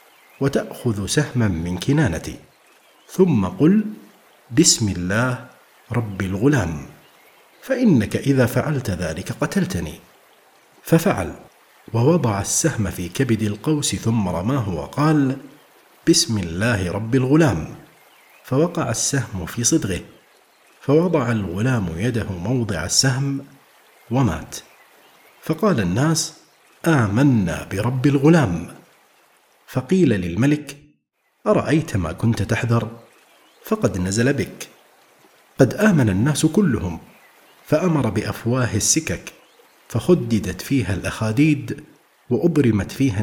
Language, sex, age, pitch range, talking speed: Arabic, male, 50-69, 90-145 Hz, 90 wpm